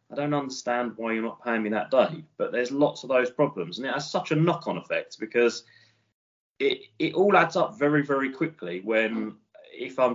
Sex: male